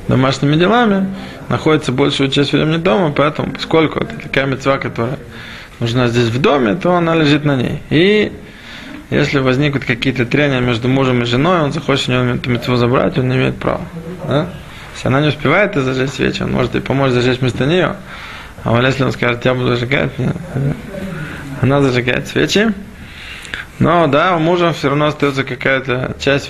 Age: 20-39